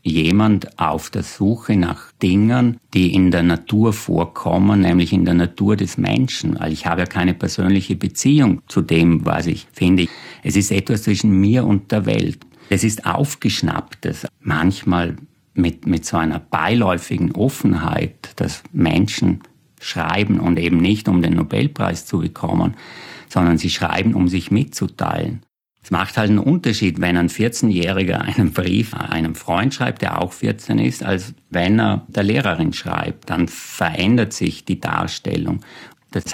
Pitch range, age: 90-110 Hz, 50-69